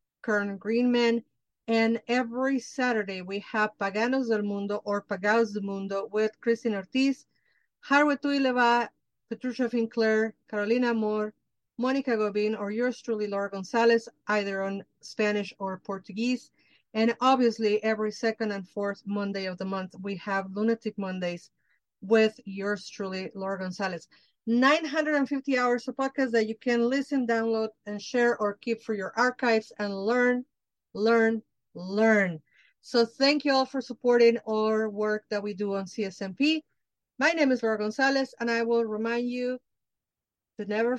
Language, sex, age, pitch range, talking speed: English, female, 40-59, 205-245 Hz, 145 wpm